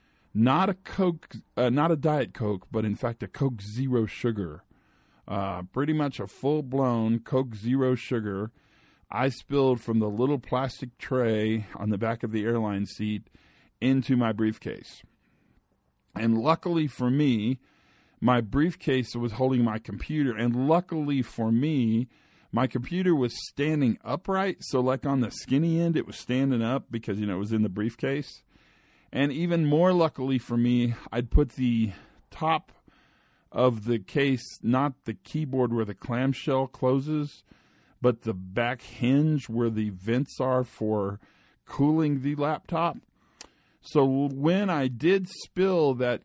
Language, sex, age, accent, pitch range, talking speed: English, male, 40-59, American, 115-145 Hz, 150 wpm